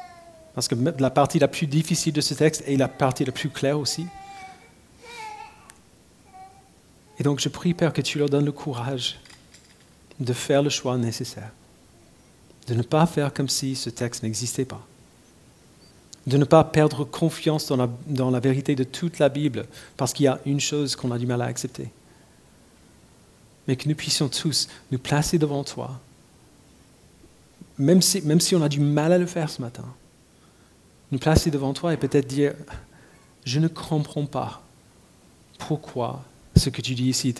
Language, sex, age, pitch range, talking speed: French, male, 40-59, 125-155 Hz, 175 wpm